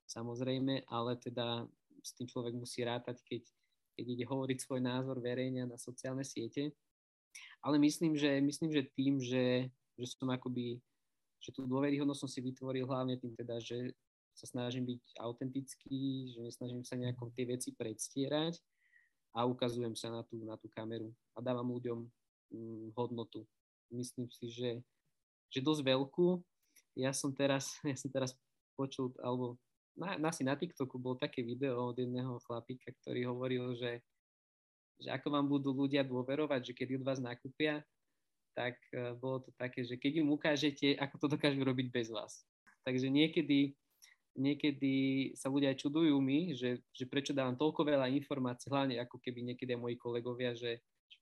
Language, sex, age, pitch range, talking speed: Slovak, male, 20-39, 120-140 Hz, 165 wpm